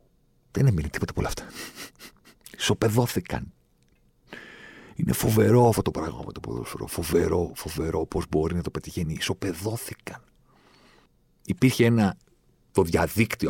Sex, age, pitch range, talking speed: male, 50-69, 90-120 Hz, 115 wpm